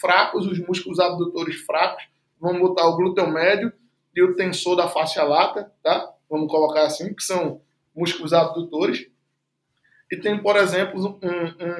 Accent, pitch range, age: Brazilian, 165-215 Hz, 20-39